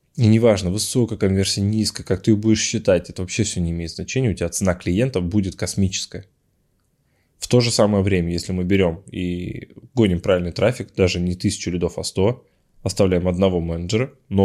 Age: 20-39